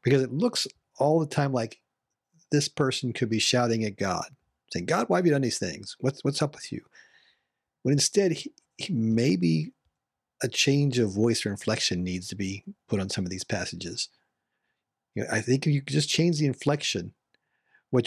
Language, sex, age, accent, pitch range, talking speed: English, male, 40-59, American, 115-145 Hz, 195 wpm